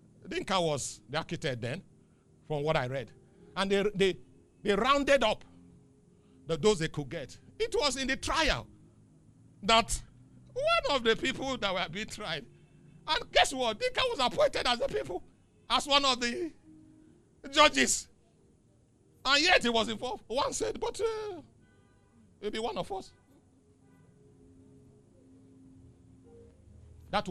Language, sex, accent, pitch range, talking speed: English, male, Nigerian, 135-230 Hz, 135 wpm